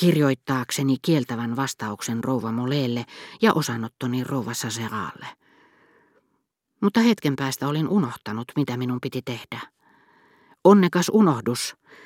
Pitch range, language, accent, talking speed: 120-155 Hz, Finnish, native, 95 wpm